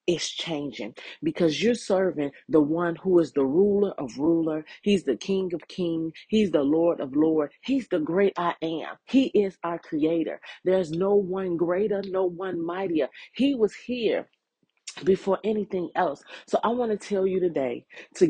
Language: English